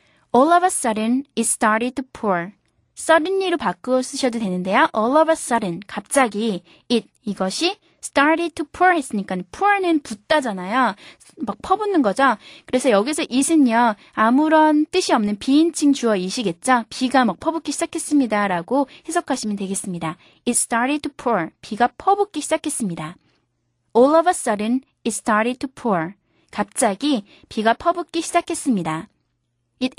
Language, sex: Korean, female